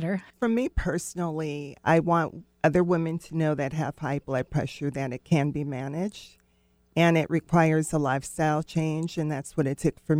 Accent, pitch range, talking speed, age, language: American, 150-175 Hz, 180 wpm, 40-59, English